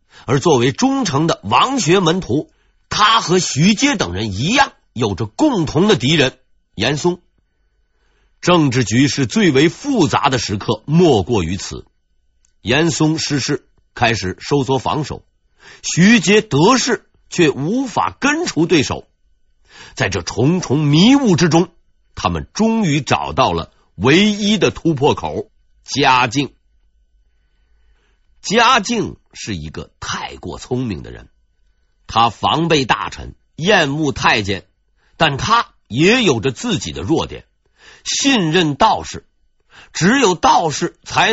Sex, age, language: male, 50-69, Chinese